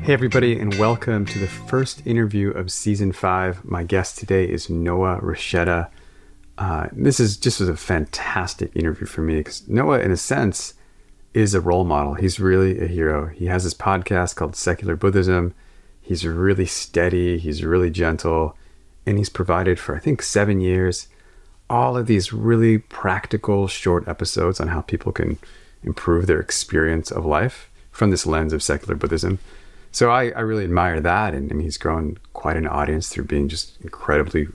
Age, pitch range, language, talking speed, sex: 30-49, 80-100 Hz, English, 170 wpm, male